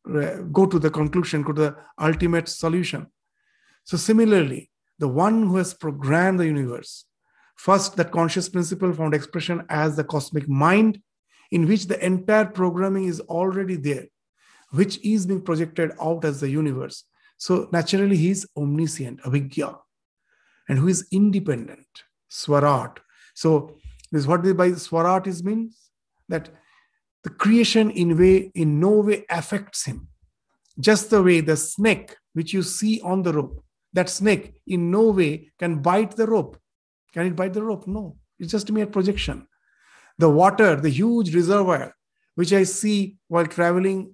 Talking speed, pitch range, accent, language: 155 wpm, 165-205 Hz, Indian, English